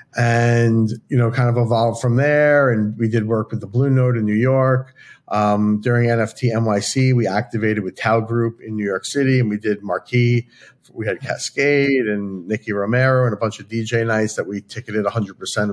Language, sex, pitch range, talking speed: English, male, 105-125 Hz, 200 wpm